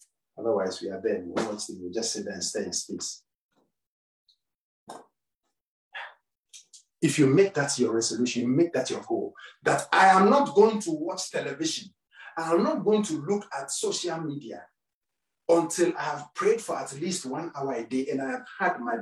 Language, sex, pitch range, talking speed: English, male, 115-165 Hz, 185 wpm